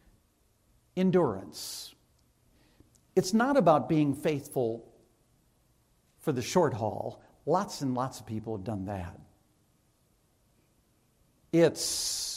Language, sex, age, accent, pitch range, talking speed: English, male, 60-79, American, 115-135 Hz, 90 wpm